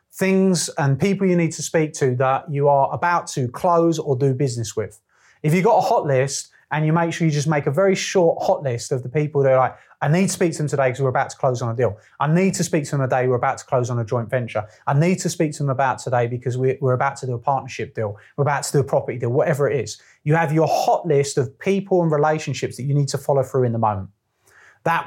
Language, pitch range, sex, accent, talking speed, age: English, 125-155 Hz, male, British, 280 wpm, 30-49